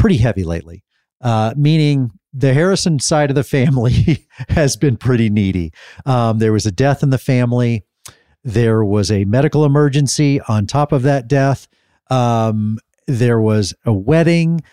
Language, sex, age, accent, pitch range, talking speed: English, male, 40-59, American, 115-145 Hz, 155 wpm